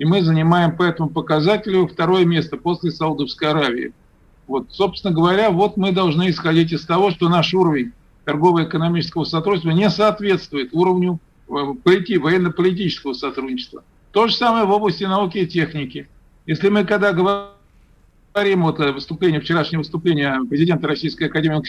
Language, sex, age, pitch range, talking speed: Russian, male, 50-69, 160-190 Hz, 135 wpm